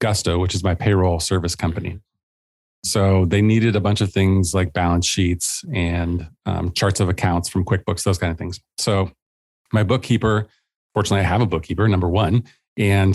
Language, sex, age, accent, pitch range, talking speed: English, male, 30-49, American, 90-105 Hz, 180 wpm